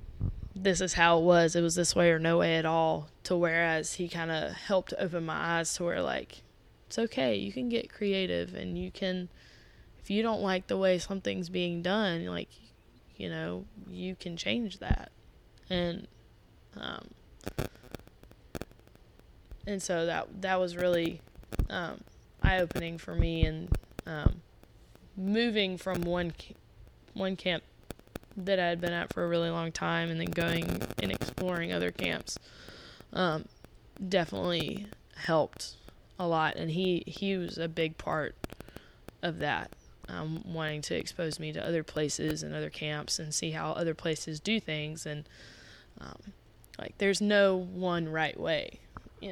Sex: female